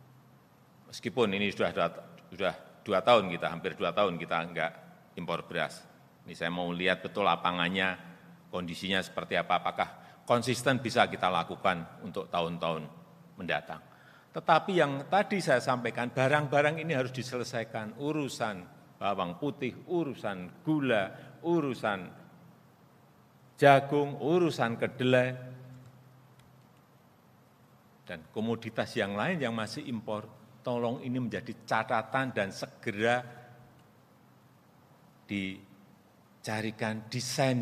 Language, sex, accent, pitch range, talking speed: Indonesian, male, native, 110-145 Hz, 105 wpm